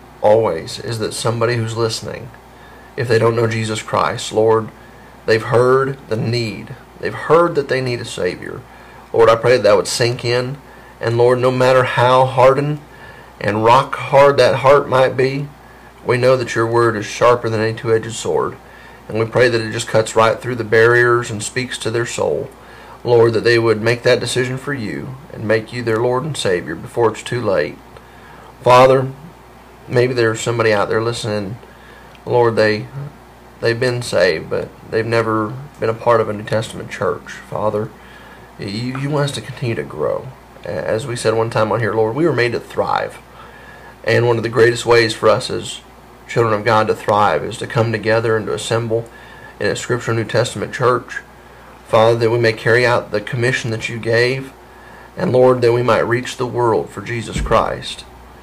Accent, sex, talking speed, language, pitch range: American, male, 190 wpm, English, 110-125 Hz